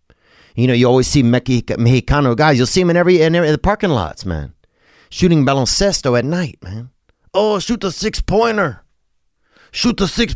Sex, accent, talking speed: male, American, 185 wpm